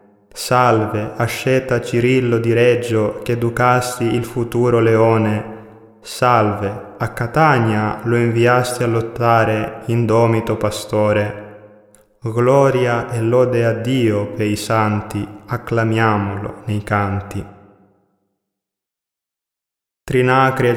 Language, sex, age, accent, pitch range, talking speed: Greek, male, 20-39, Italian, 110-125 Hz, 90 wpm